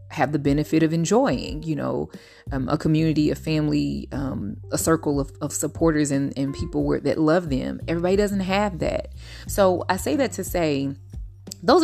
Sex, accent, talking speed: female, American, 175 wpm